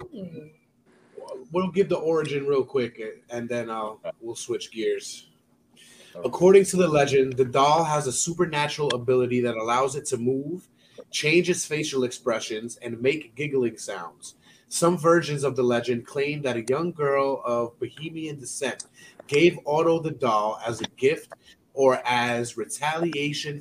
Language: English